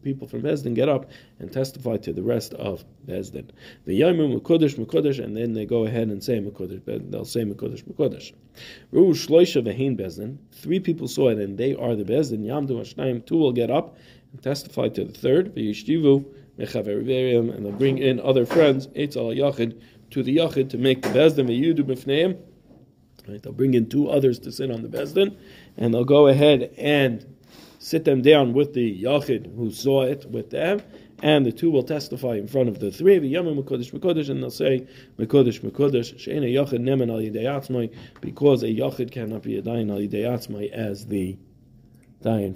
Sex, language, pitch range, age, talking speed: male, English, 115-145 Hz, 40-59, 190 wpm